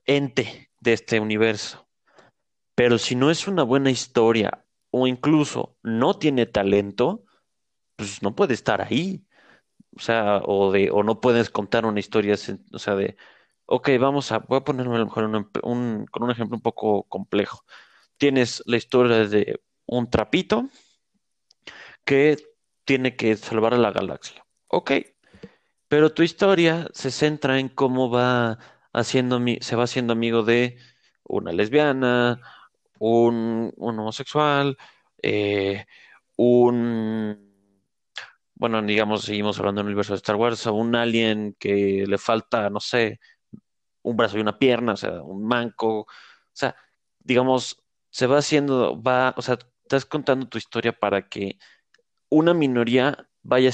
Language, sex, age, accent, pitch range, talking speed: Spanish, male, 30-49, Mexican, 110-130 Hz, 145 wpm